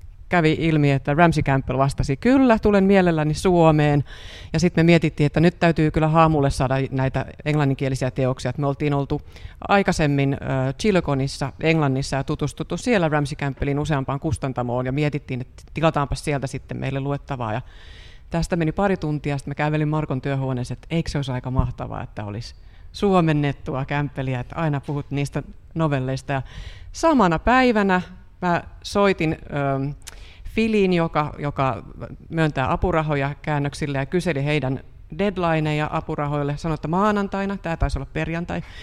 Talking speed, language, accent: 140 wpm, Finnish, native